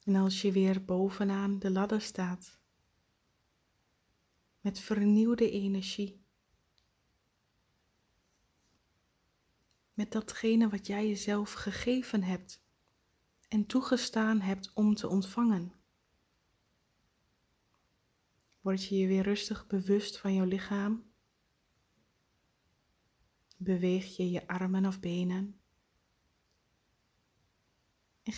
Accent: Dutch